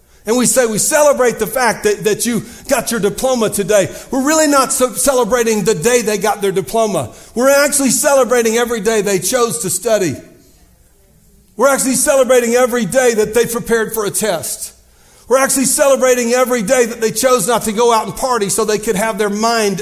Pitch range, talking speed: 200-245 Hz, 195 wpm